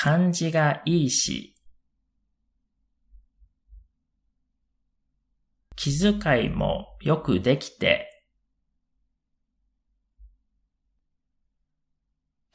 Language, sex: Japanese, male